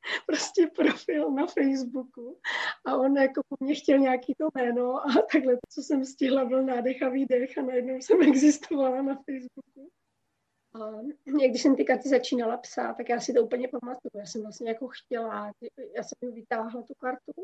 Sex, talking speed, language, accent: female, 175 wpm, Czech, native